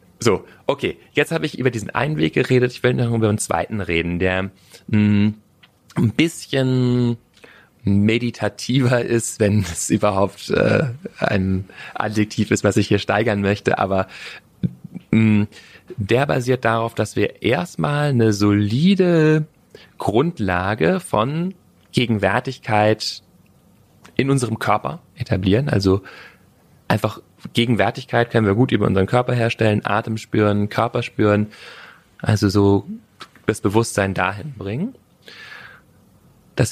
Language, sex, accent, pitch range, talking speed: German, male, German, 100-125 Hz, 115 wpm